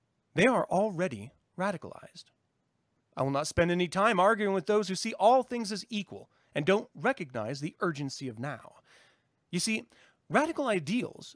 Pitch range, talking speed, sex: 150-230 Hz, 160 wpm, male